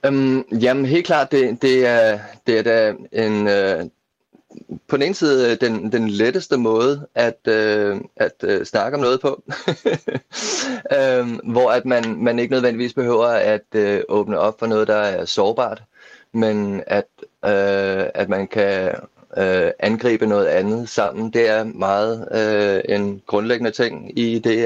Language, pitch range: Danish, 105-120 Hz